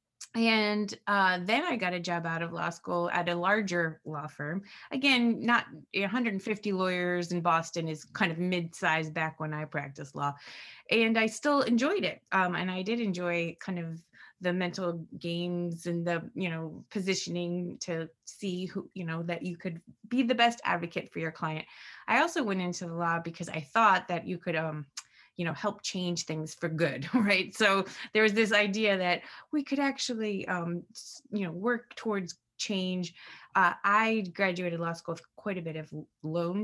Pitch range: 170-205 Hz